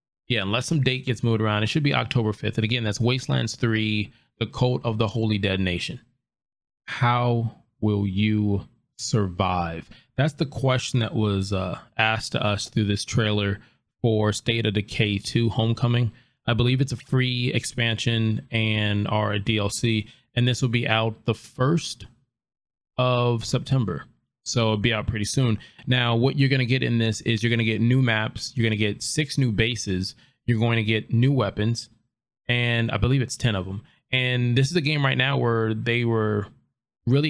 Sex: male